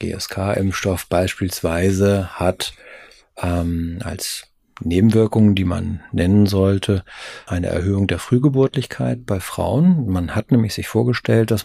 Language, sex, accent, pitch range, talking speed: German, male, German, 95-115 Hz, 115 wpm